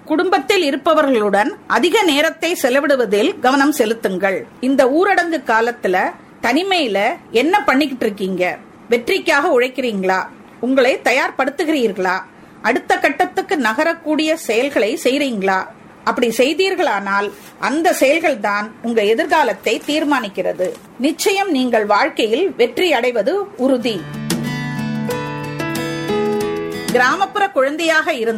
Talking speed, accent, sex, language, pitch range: 95 wpm, Indian, female, English, 215-330 Hz